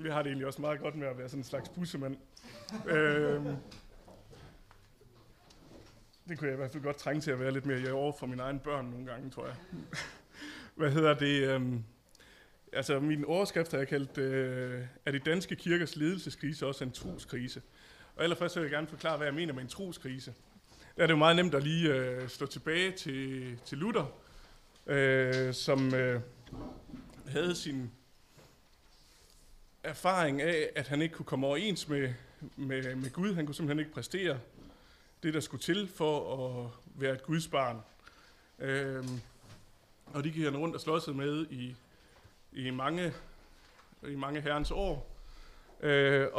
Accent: native